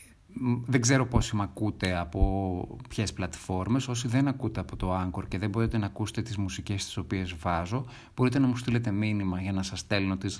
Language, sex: Greek, male